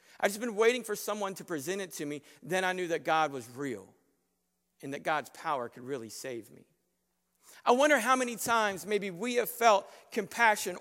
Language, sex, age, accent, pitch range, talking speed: English, male, 50-69, American, 195-255 Hz, 200 wpm